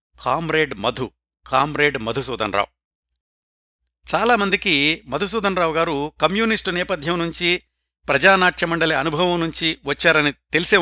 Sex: male